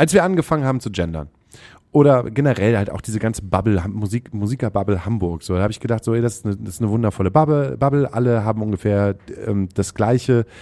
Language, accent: German, German